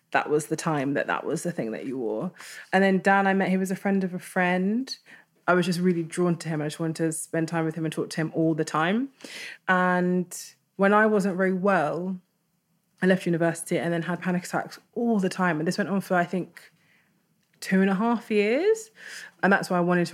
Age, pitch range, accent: 20-39, 165-195 Hz, British